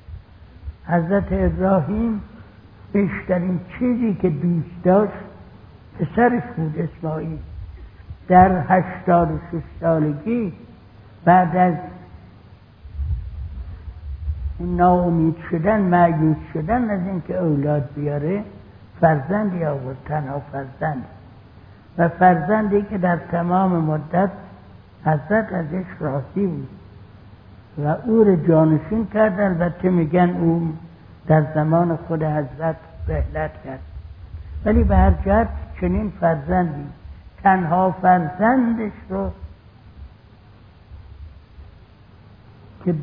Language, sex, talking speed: Persian, male, 80 wpm